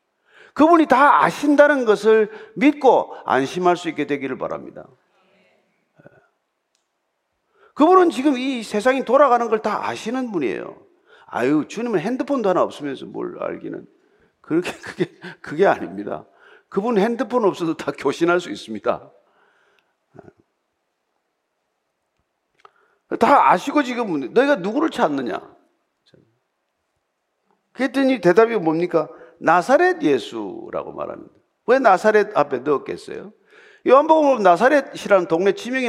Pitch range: 195-315 Hz